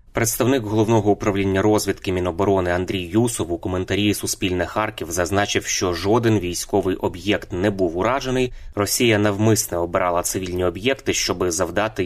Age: 20-39